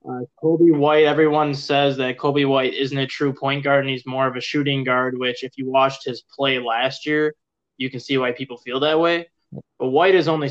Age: 20-39